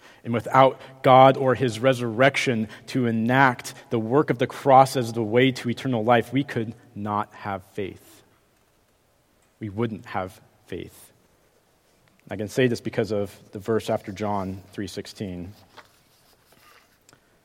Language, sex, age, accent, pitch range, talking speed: English, male, 40-59, American, 105-130 Hz, 135 wpm